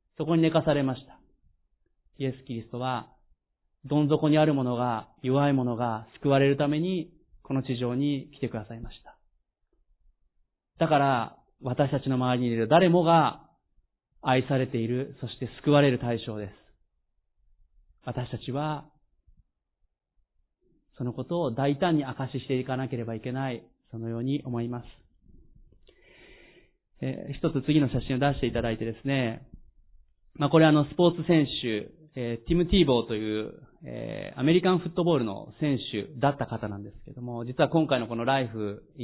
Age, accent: 30-49, native